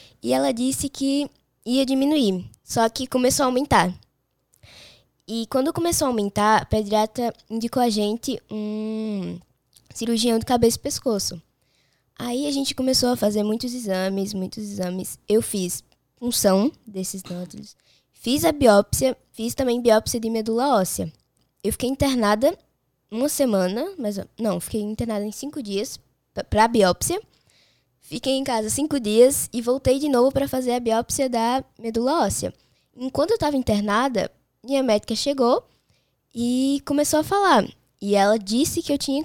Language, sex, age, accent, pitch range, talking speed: Portuguese, female, 10-29, Brazilian, 210-265 Hz, 150 wpm